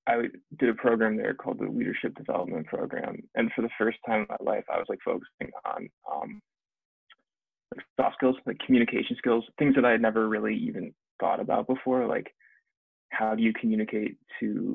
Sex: male